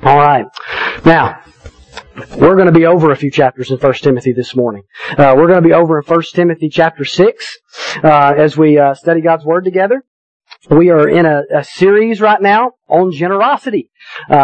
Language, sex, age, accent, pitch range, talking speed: English, male, 40-59, American, 155-195 Hz, 185 wpm